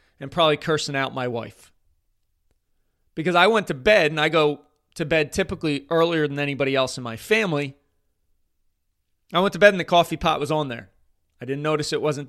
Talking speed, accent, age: 195 wpm, American, 30-49